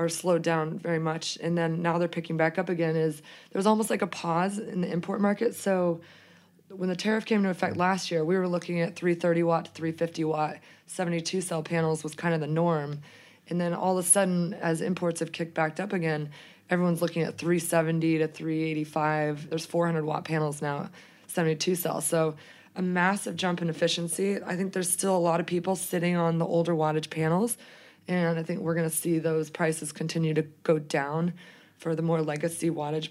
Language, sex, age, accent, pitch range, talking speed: English, female, 20-39, American, 155-175 Hz, 205 wpm